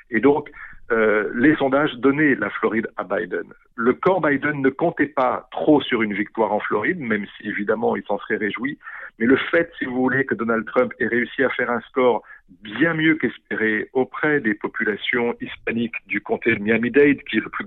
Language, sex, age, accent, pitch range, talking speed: French, male, 50-69, French, 115-155 Hz, 200 wpm